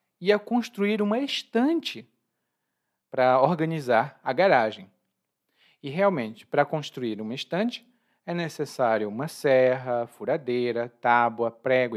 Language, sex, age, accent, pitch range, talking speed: Portuguese, male, 40-59, Brazilian, 130-200 Hz, 105 wpm